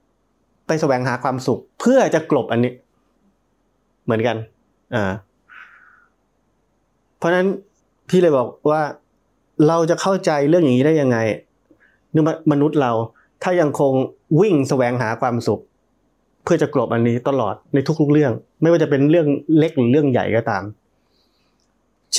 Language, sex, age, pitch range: Thai, male, 20-39, 115-150 Hz